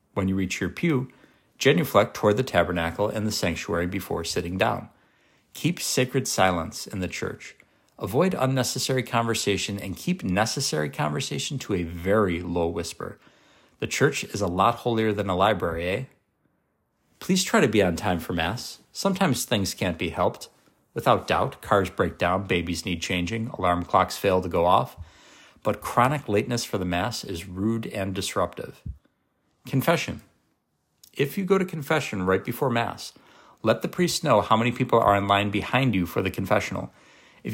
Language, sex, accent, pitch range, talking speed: English, male, American, 95-120 Hz, 170 wpm